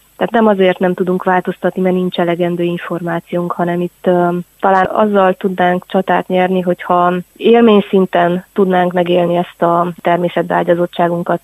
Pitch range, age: 175-195 Hz, 20-39